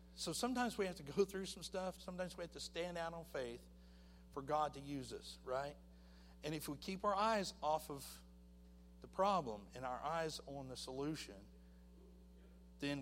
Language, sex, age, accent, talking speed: English, male, 50-69, American, 185 wpm